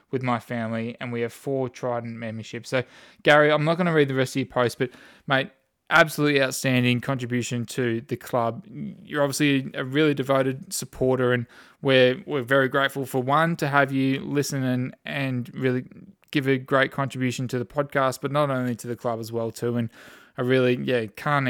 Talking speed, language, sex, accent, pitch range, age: 195 wpm, English, male, Australian, 125-145 Hz, 20-39